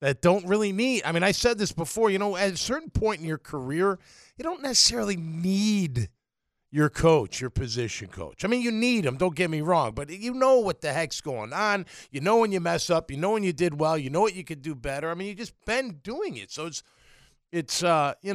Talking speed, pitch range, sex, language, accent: 250 wpm, 155-220 Hz, male, English, American